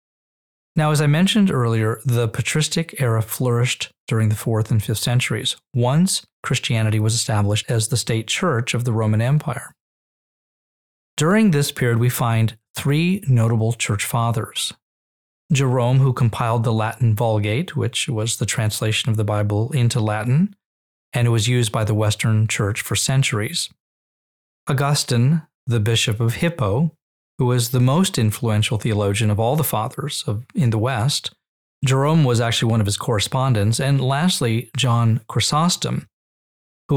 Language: English